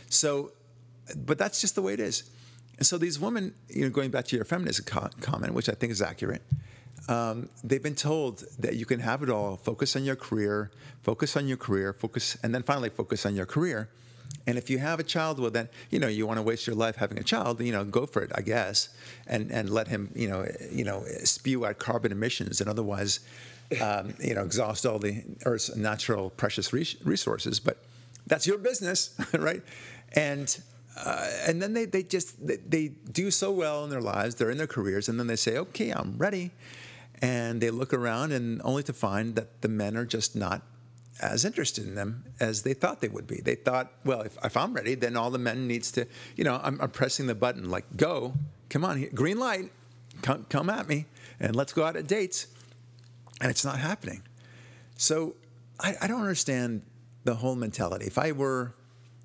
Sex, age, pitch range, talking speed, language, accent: male, 50-69, 115-140 Hz, 210 wpm, English, American